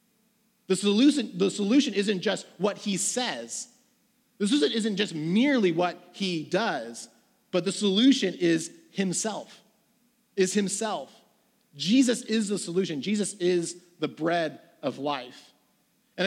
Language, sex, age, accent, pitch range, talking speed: English, male, 30-49, American, 155-230 Hz, 125 wpm